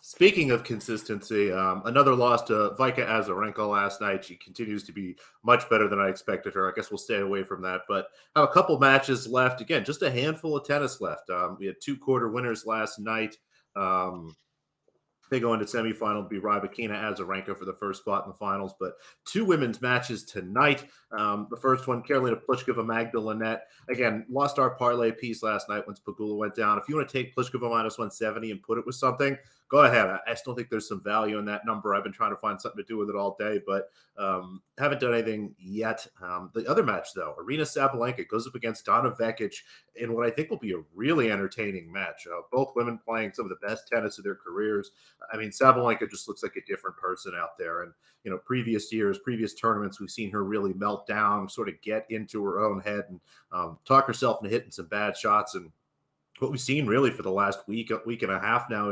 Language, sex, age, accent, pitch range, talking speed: English, male, 30-49, American, 105-125 Hz, 225 wpm